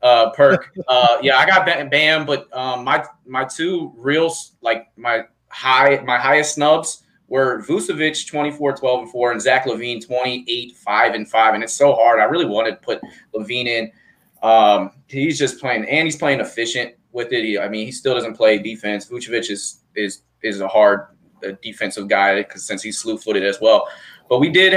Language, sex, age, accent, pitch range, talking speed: English, male, 20-39, American, 120-160 Hz, 190 wpm